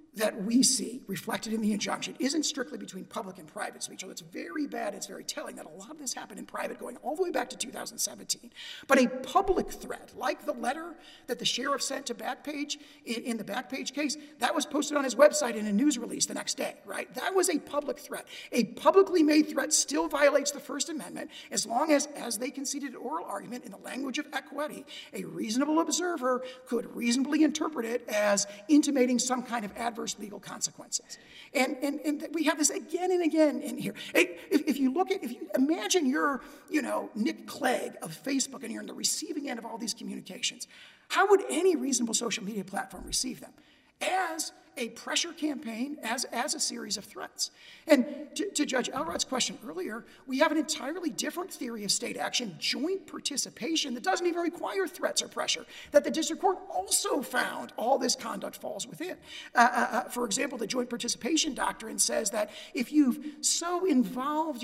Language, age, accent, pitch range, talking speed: English, 50-69, American, 245-310 Hz, 200 wpm